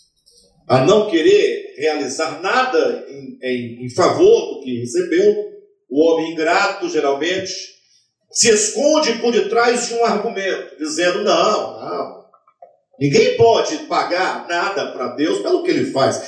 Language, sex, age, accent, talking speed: Portuguese, male, 50-69, Brazilian, 135 wpm